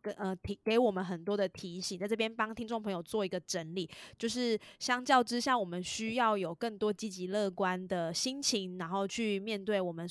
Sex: female